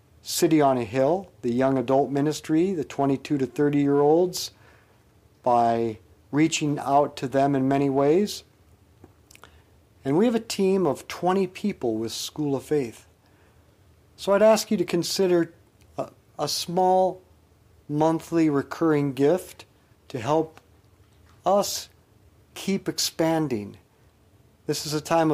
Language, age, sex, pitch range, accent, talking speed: English, 50-69, male, 105-160 Hz, American, 130 wpm